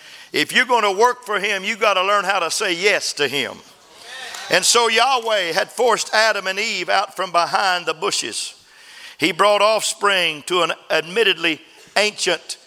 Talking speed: 165 wpm